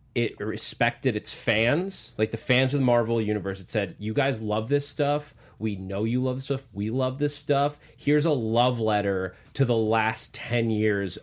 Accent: American